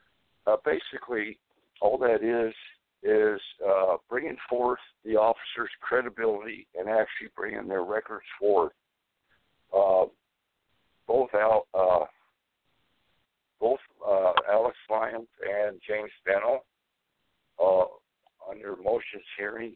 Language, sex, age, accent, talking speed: English, male, 60-79, American, 100 wpm